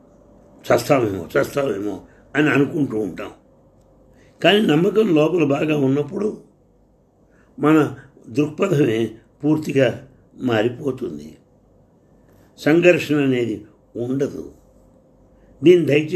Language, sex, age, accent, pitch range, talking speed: English, male, 60-79, Indian, 115-160 Hz, 55 wpm